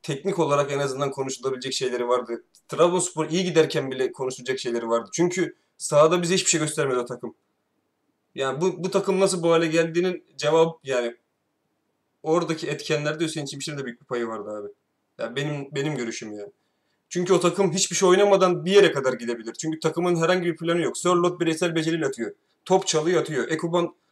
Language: Turkish